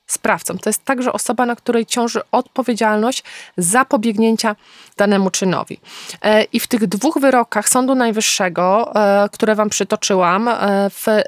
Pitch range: 205-240 Hz